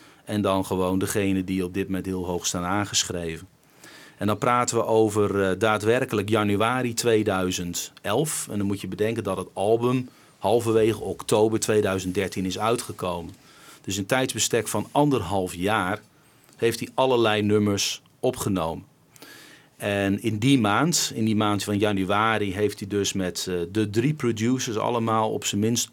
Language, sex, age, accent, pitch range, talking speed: Dutch, male, 40-59, Dutch, 95-115 Hz, 155 wpm